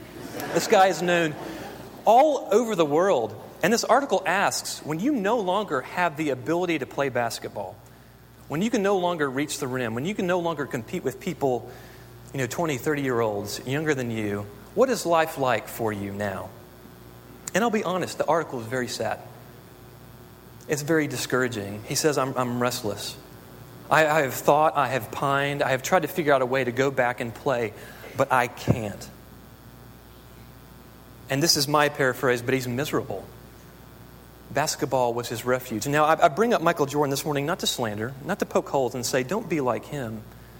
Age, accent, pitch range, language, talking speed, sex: 30-49, American, 120-170 Hz, English, 185 wpm, male